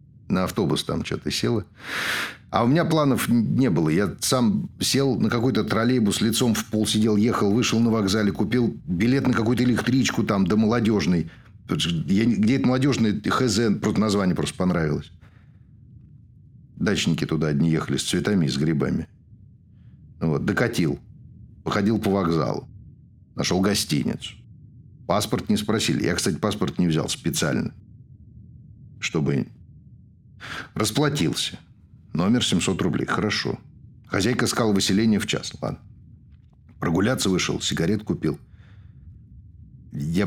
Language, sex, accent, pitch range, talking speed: Russian, male, native, 105-125 Hz, 120 wpm